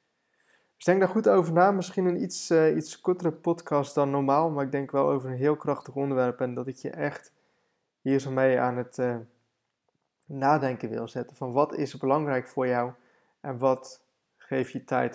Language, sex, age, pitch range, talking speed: Dutch, male, 20-39, 125-150 Hz, 195 wpm